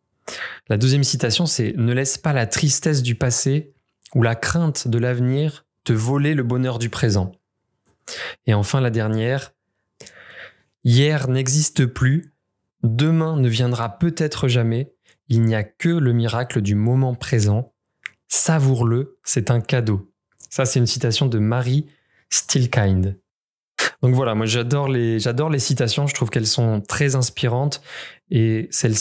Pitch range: 115-135 Hz